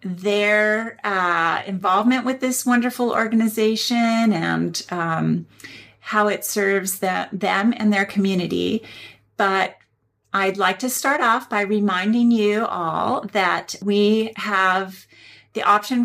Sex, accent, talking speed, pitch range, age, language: female, American, 120 wpm, 195-235 Hz, 40-59, English